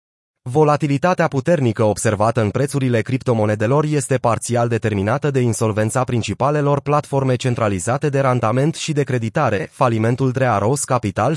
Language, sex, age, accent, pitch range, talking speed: Romanian, male, 30-49, native, 115-150 Hz, 115 wpm